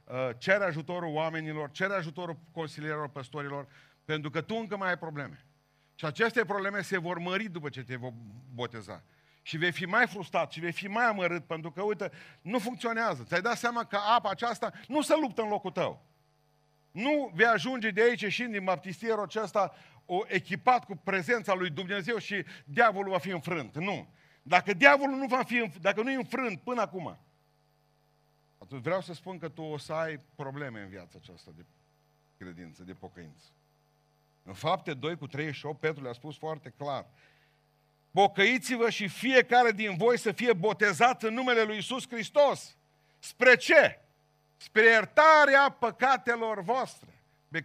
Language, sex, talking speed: Romanian, male, 165 wpm